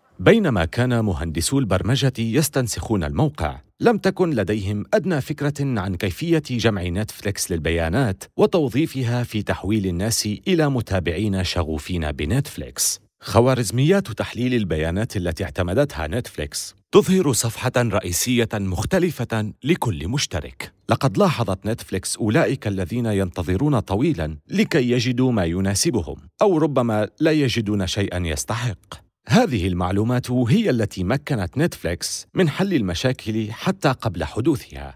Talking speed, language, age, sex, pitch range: 110 wpm, Arabic, 40-59, male, 90-130 Hz